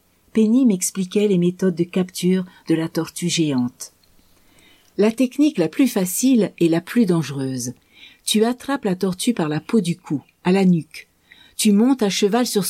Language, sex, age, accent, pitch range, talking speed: French, female, 50-69, French, 170-235 Hz, 175 wpm